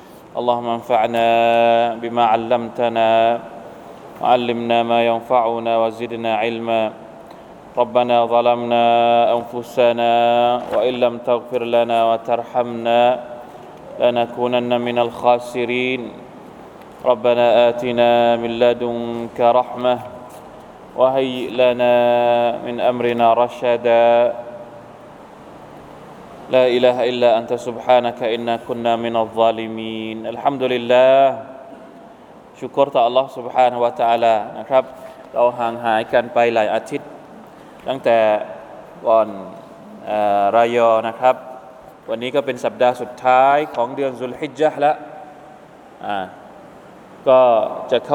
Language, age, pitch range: Thai, 20-39, 115-125 Hz